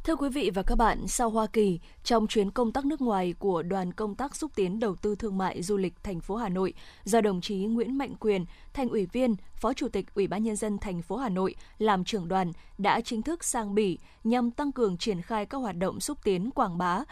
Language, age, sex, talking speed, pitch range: Vietnamese, 20-39, female, 250 wpm, 200-245 Hz